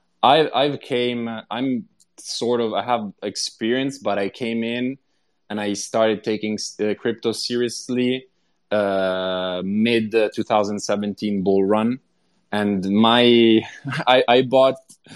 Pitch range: 100-120 Hz